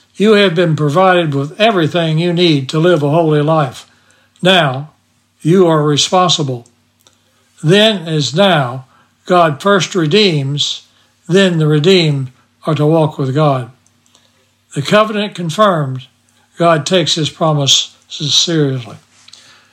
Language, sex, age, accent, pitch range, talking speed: English, male, 60-79, American, 140-180 Hz, 120 wpm